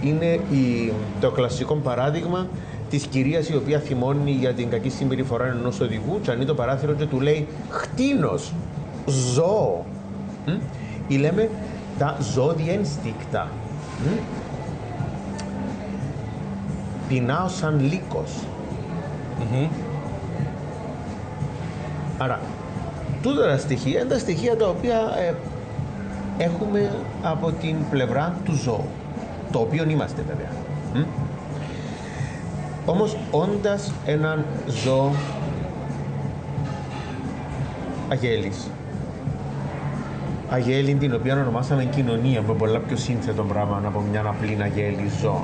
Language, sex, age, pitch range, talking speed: English, male, 40-59, 125-160 Hz, 95 wpm